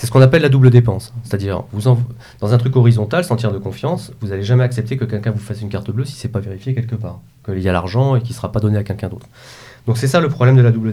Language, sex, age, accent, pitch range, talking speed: French, male, 40-59, French, 110-135 Hz, 300 wpm